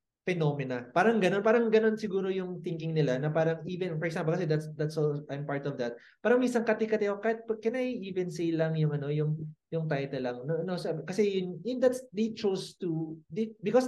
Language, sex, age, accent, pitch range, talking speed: English, male, 20-39, Filipino, 150-205 Hz, 220 wpm